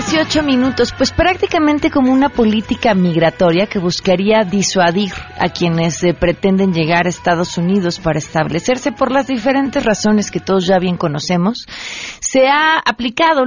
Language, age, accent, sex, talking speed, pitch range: Spanish, 40-59, Mexican, female, 145 wpm, 175-225 Hz